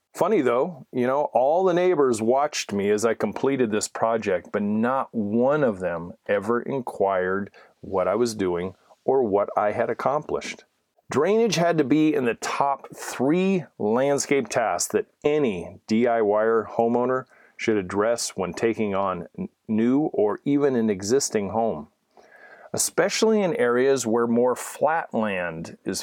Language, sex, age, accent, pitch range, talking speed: English, male, 40-59, American, 110-135 Hz, 145 wpm